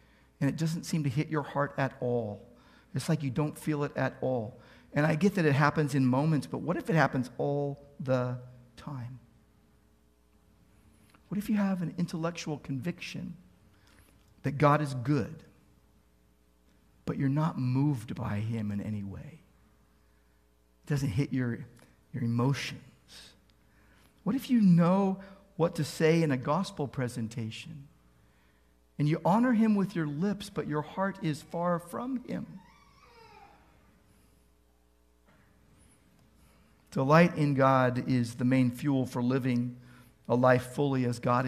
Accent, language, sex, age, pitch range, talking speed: American, English, male, 50-69, 120-165 Hz, 145 wpm